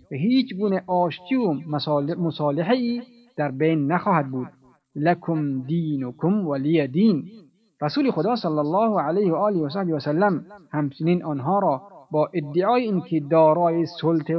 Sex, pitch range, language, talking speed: male, 150-185 Hz, Persian, 130 wpm